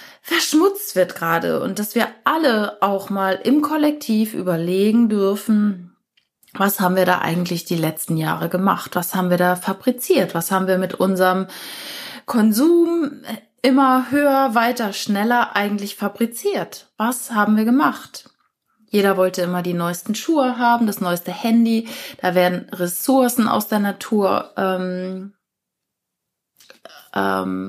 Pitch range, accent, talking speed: 180-240 Hz, German, 130 wpm